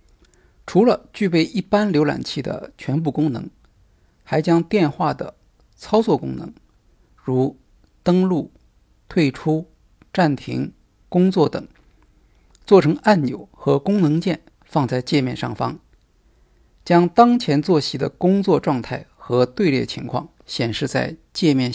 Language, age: Chinese, 50-69